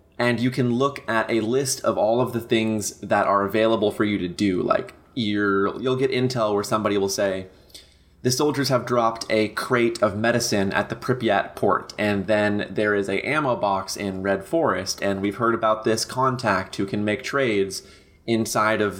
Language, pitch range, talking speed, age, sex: English, 100-125 Hz, 195 wpm, 20-39, male